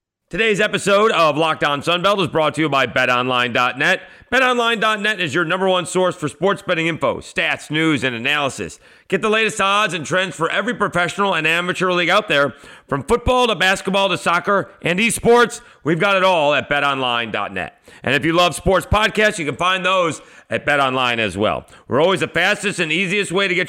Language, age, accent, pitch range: English, 40-59, American, 160-200 Hz